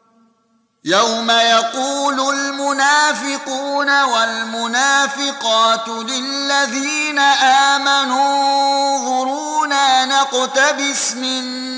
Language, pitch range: Arabic, 230-275 Hz